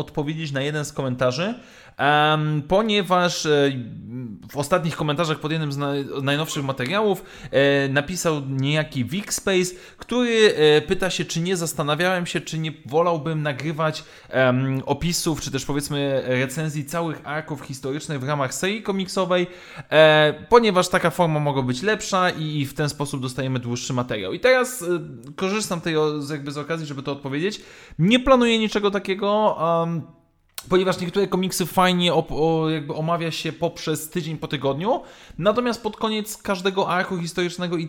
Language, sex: Polish, male